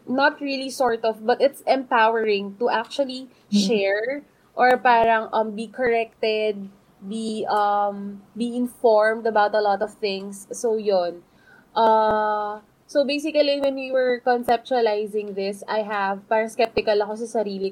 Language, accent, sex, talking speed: English, Filipino, female, 140 wpm